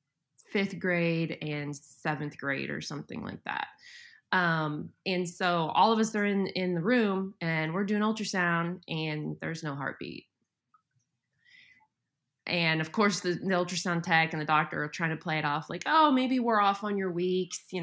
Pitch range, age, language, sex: 155-195 Hz, 20-39, English, female